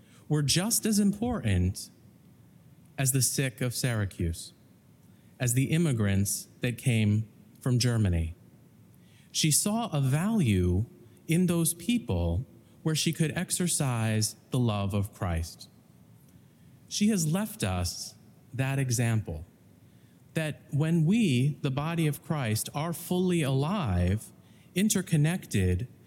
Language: English